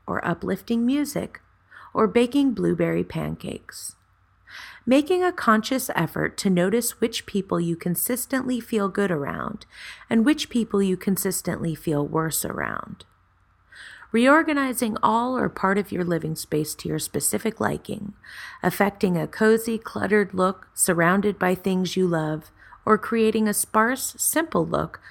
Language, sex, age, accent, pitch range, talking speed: English, female, 30-49, American, 170-225 Hz, 135 wpm